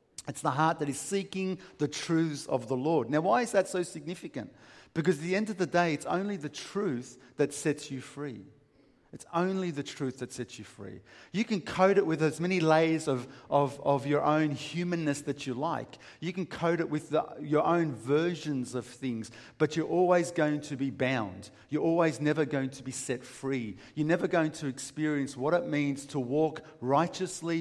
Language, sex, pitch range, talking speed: English, male, 125-160 Hz, 205 wpm